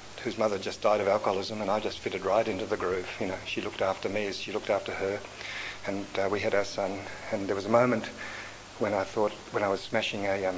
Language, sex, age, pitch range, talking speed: English, male, 50-69, 100-115 Hz, 255 wpm